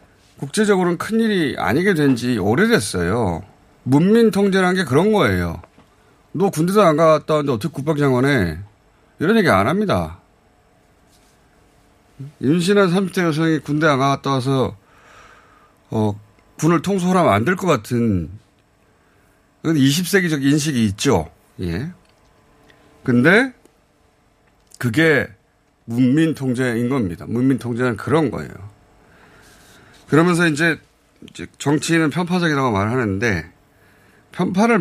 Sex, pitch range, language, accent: male, 105-155 Hz, Korean, native